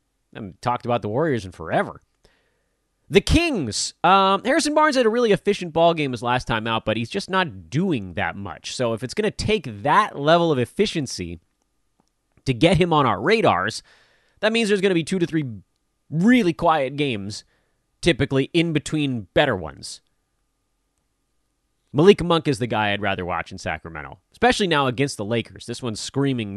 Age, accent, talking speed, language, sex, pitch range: 30-49, American, 185 wpm, English, male, 105-165 Hz